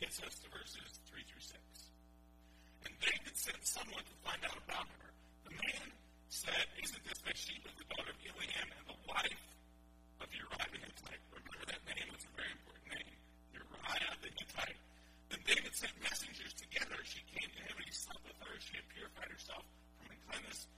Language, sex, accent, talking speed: English, male, American, 190 wpm